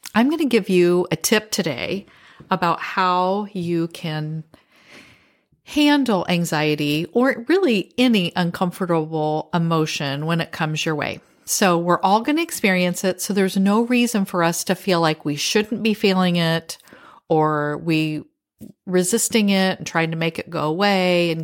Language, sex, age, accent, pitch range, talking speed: English, female, 40-59, American, 165-210 Hz, 160 wpm